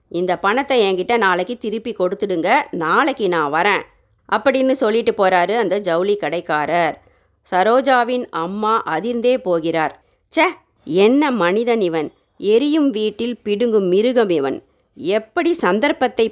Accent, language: native, Tamil